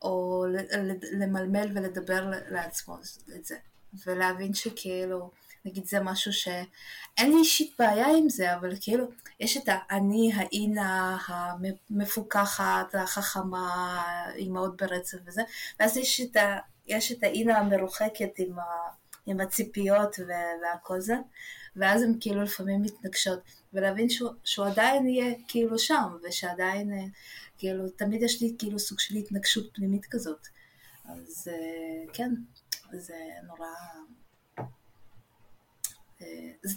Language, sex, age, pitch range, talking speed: Hebrew, female, 20-39, 185-225 Hz, 105 wpm